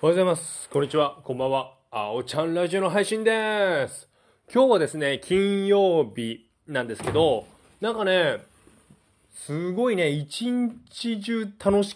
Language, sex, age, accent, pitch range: Japanese, male, 20-39, native, 130-205 Hz